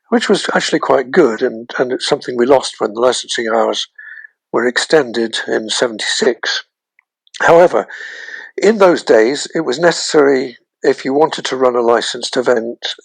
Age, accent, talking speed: 60-79, British, 155 wpm